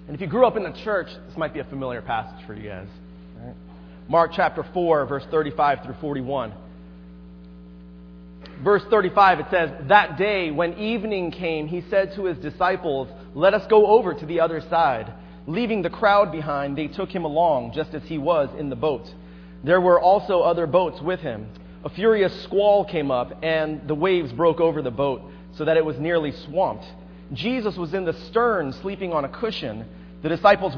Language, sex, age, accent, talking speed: English, male, 30-49, American, 190 wpm